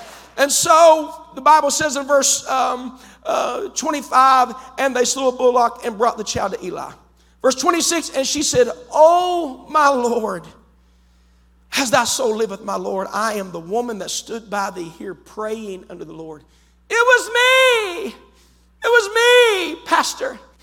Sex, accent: male, American